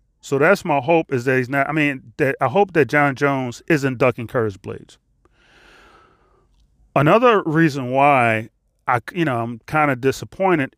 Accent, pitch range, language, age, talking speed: American, 130-160 Hz, English, 30-49, 175 wpm